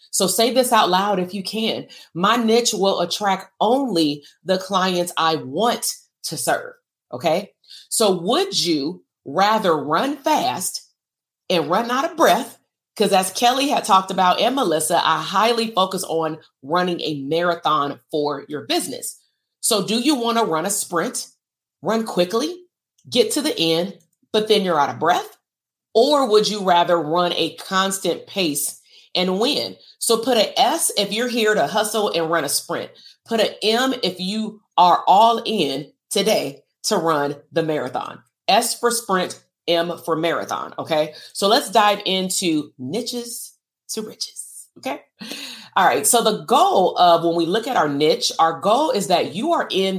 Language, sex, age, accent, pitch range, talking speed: English, female, 30-49, American, 170-225 Hz, 165 wpm